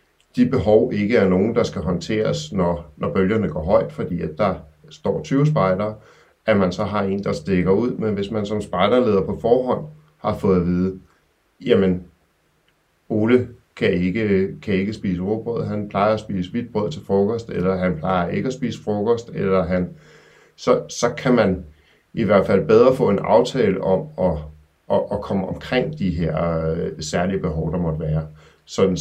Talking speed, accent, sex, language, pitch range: 180 wpm, native, male, Danish, 85-105 Hz